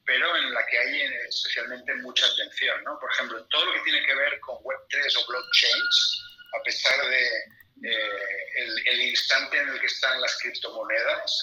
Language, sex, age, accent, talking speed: Spanish, male, 40-59, Spanish, 180 wpm